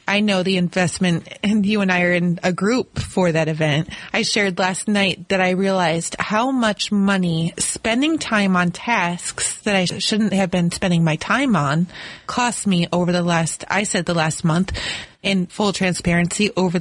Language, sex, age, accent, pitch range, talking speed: English, female, 30-49, American, 180-225 Hz, 185 wpm